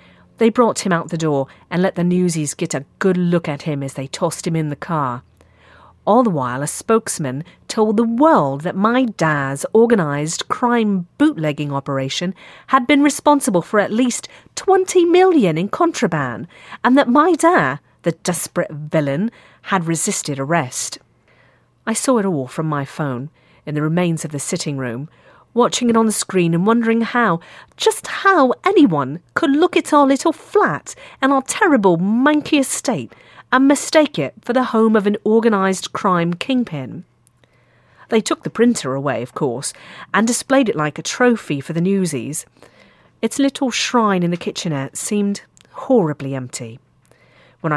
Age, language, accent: 40-59, English, British